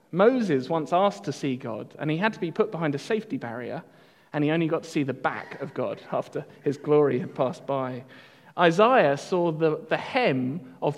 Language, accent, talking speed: English, British, 210 wpm